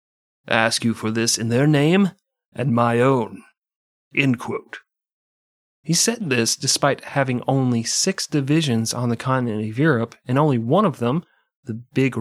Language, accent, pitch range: English, American, 115-140 Hz